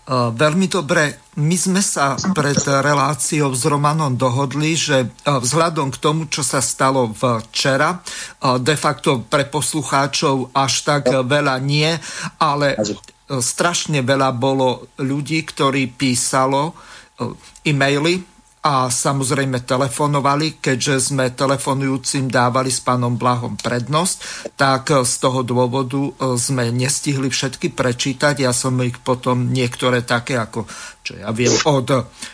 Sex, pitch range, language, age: male, 130-150 Hz, Slovak, 50-69